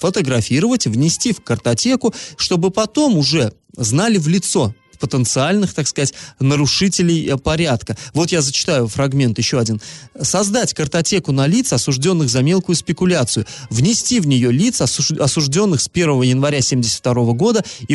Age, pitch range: 20-39, 130-185 Hz